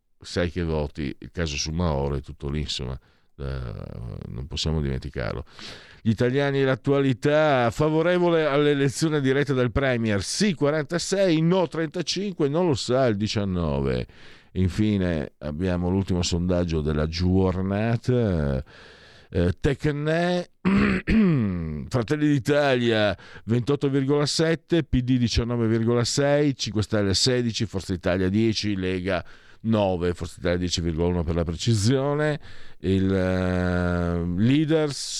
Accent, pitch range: native, 90-140 Hz